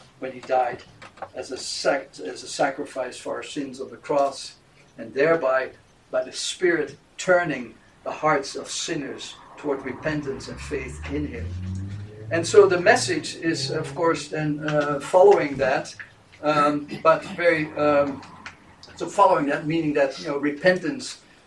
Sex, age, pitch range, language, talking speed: male, 60-79, 135-185 Hz, English, 150 wpm